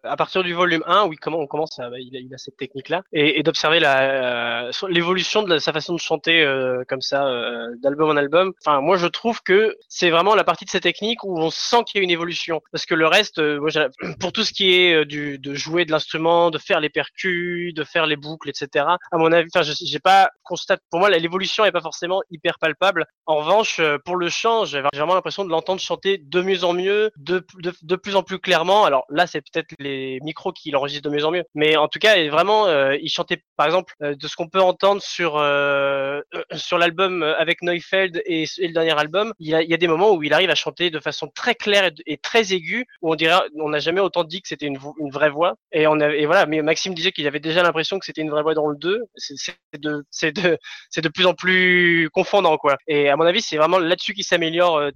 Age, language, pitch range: 20-39, French, 150-185 Hz